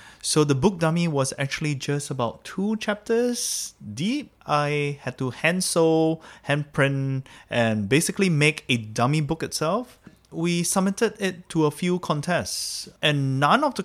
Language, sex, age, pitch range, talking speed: English, male, 20-39, 115-160 Hz, 145 wpm